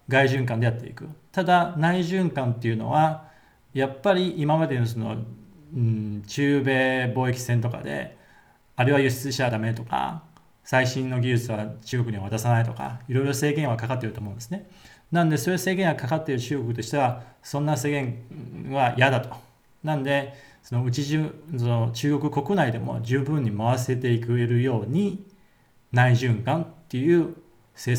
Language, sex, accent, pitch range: Japanese, male, native, 115-150 Hz